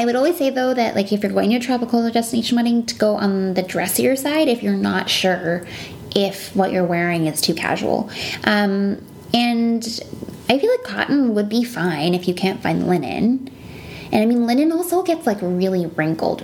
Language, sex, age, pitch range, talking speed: English, female, 20-39, 180-240 Hz, 200 wpm